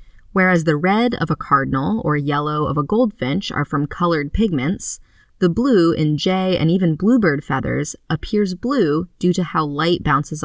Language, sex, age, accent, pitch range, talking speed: English, female, 20-39, American, 150-200 Hz, 170 wpm